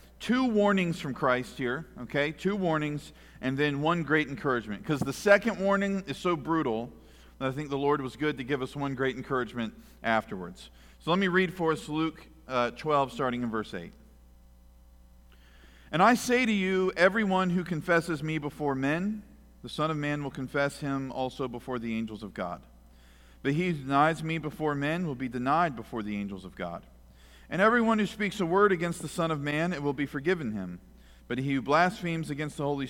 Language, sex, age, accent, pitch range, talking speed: English, male, 50-69, American, 110-165 Hz, 200 wpm